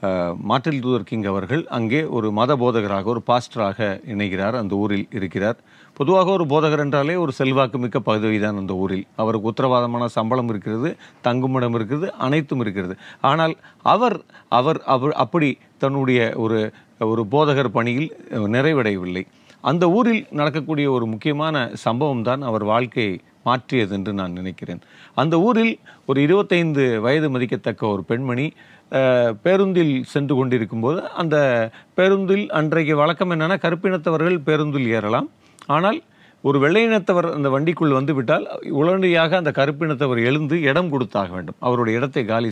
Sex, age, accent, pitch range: male, 40-59, native, 115-160 Hz